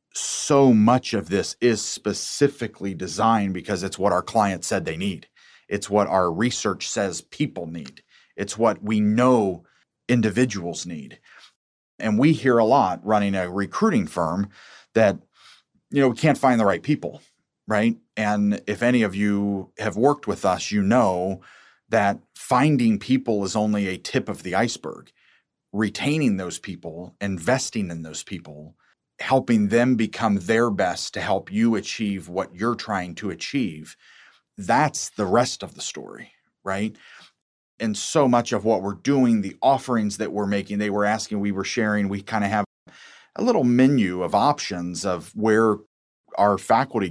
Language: English